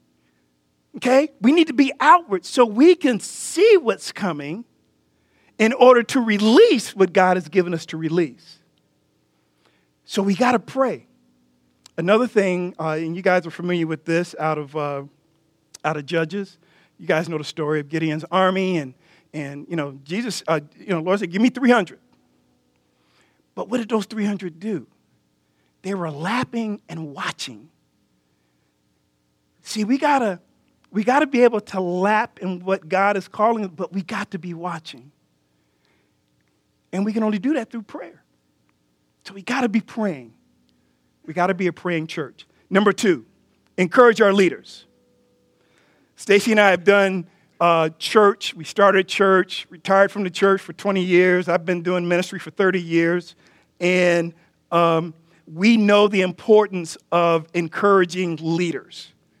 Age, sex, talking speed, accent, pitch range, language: 50-69, male, 160 wpm, American, 155-205 Hz, English